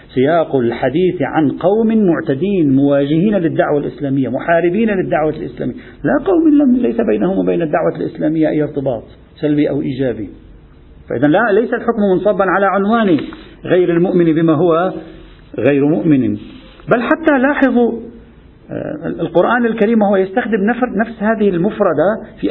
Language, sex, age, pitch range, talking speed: Arabic, male, 50-69, 150-210 Hz, 125 wpm